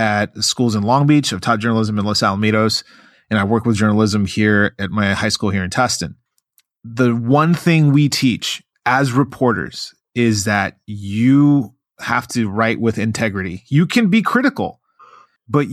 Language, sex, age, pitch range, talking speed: English, male, 30-49, 110-140 Hz, 170 wpm